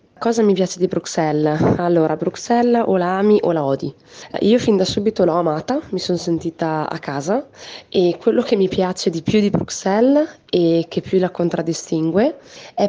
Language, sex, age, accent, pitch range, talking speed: Italian, female, 20-39, native, 155-185 Hz, 180 wpm